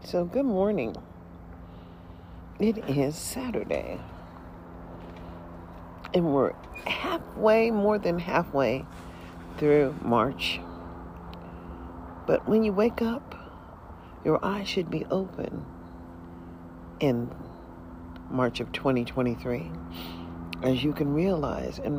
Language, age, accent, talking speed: English, 50-69, American, 90 wpm